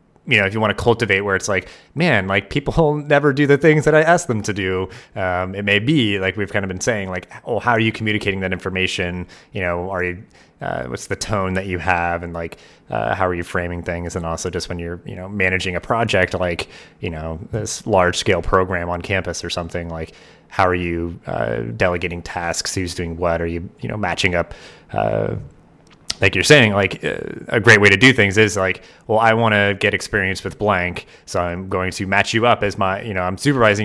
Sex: male